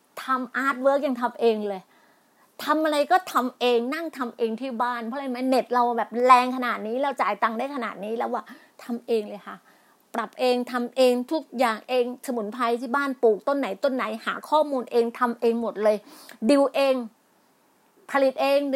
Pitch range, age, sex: 230-290 Hz, 30-49, female